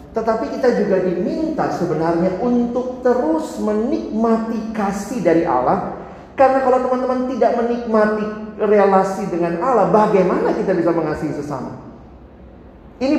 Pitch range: 155-215 Hz